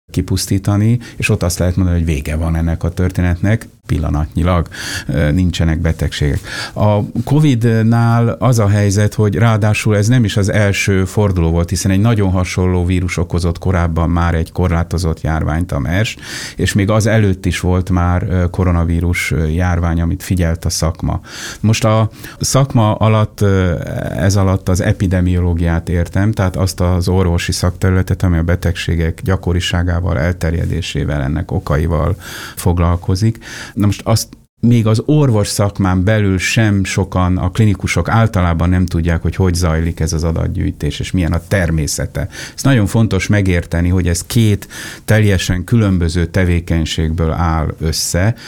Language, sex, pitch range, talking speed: Hungarian, male, 85-105 Hz, 140 wpm